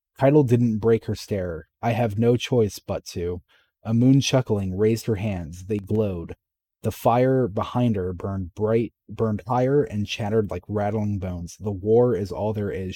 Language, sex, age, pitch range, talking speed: English, male, 30-49, 95-115 Hz, 175 wpm